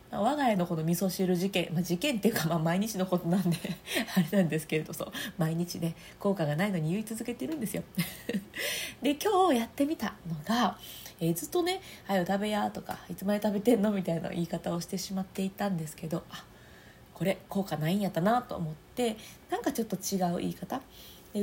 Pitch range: 175-230 Hz